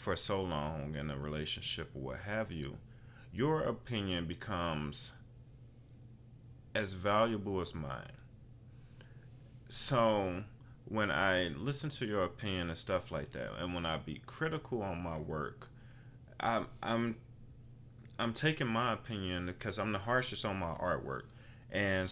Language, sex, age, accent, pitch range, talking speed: English, male, 30-49, American, 90-120 Hz, 135 wpm